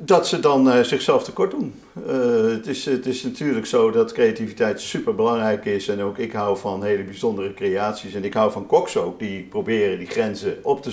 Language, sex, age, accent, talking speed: Dutch, male, 50-69, Dutch, 205 wpm